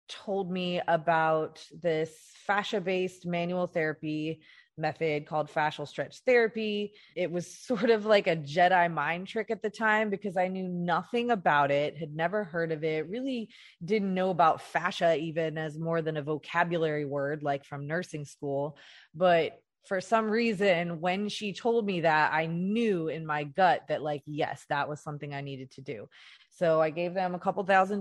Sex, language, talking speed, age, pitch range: female, English, 175 wpm, 20-39, 160-190 Hz